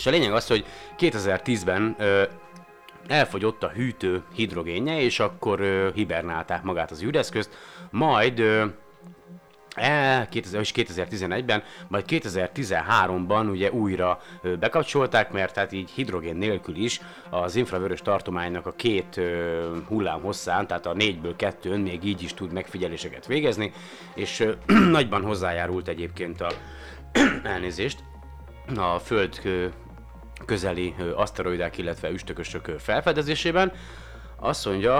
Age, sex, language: 30-49, male, Hungarian